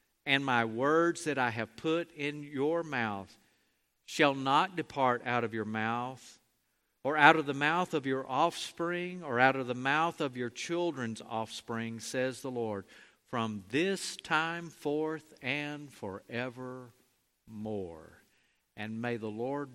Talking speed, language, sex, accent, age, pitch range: 145 wpm, English, male, American, 50-69, 110-145 Hz